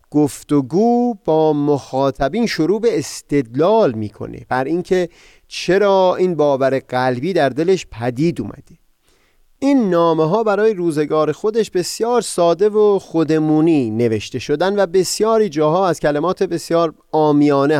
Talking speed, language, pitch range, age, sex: 125 wpm, Persian, 130-185 Hz, 30-49, male